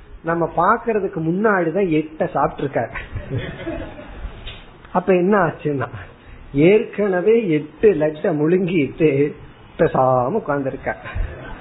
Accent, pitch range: native, 145-195 Hz